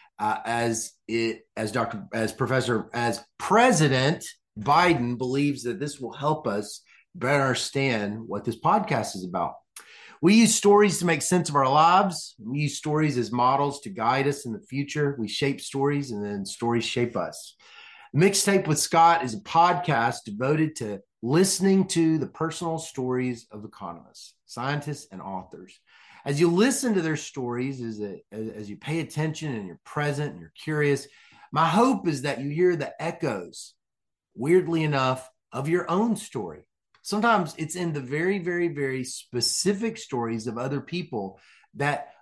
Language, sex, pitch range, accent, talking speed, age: English, male, 120-170 Hz, American, 160 wpm, 30-49